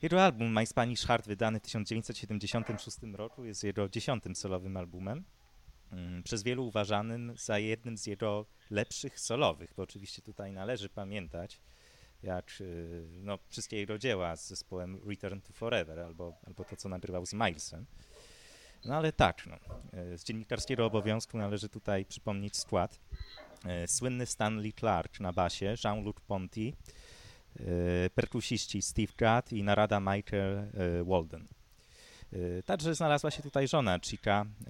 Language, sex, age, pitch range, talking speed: Polish, male, 30-49, 95-120 Hz, 130 wpm